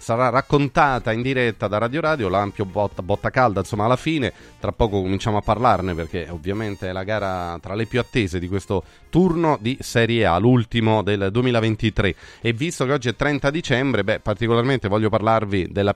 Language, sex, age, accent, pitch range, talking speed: Italian, male, 30-49, native, 100-130 Hz, 185 wpm